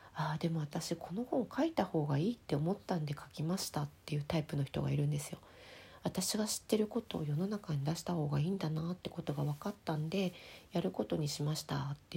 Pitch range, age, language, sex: 140-175 Hz, 40-59, Japanese, female